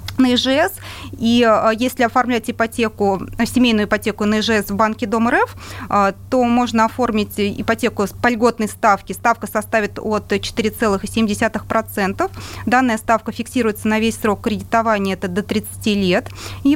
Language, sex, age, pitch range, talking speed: Russian, female, 30-49, 200-235 Hz, 130 wpm